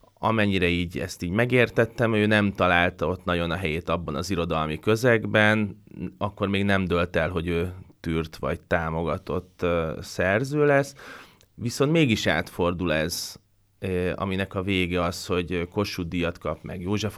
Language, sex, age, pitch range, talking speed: Hungarian, male, 20-39, 90-105 Hz, 145 wpm